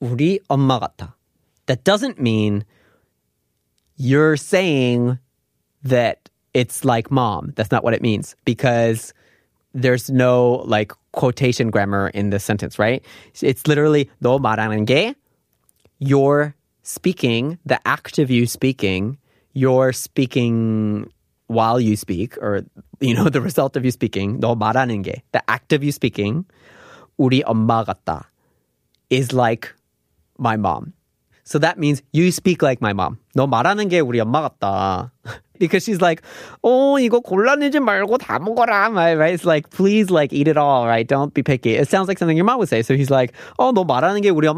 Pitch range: 115-155 Hz